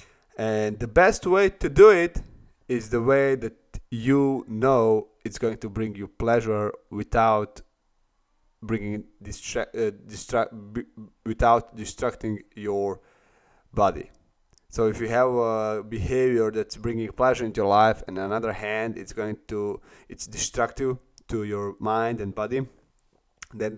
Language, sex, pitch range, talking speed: English, male, 100-115 Hz, 145 wpm